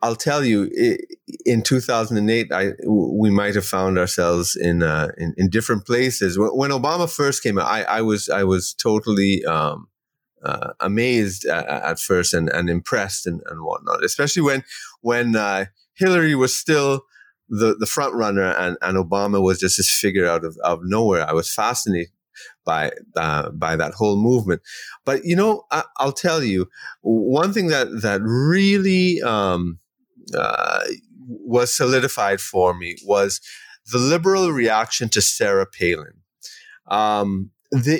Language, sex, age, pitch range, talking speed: English, male, 30-49, 100-140 Hz, 160 wpm